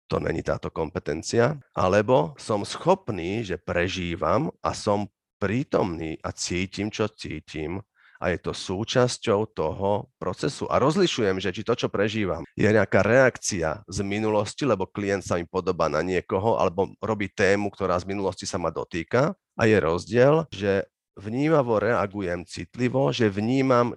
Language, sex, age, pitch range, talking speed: Slovak, male, 40-59, 95-115 Hz, 150 wpm